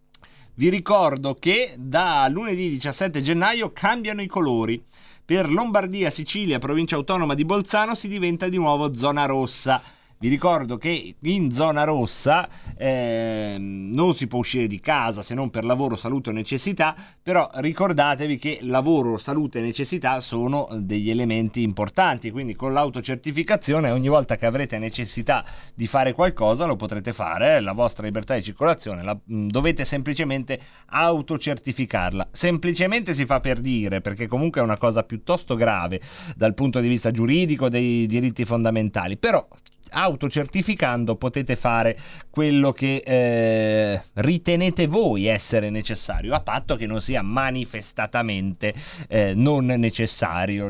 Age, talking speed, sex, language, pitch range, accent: 30-49, 135 wpm, male, Italian, 110-150 Hz, native